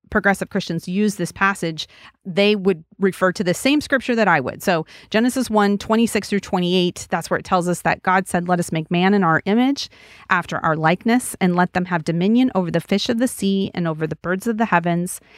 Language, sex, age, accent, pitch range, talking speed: English, female, 30-49, American, 170-210 Hz, 220 wpm